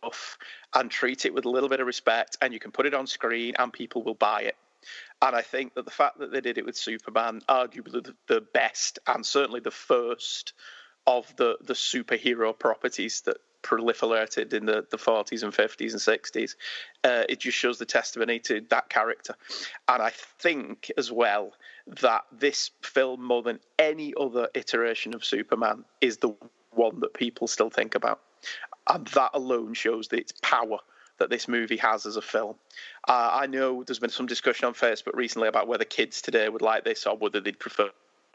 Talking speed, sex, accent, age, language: 190 wpm, male, British, 30-49, English